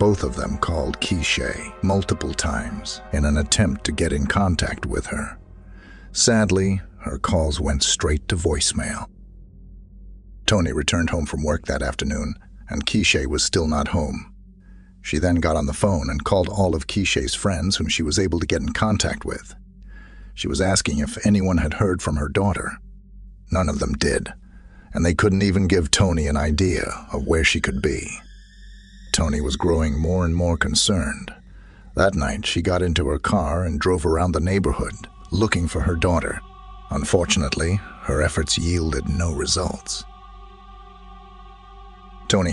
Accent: American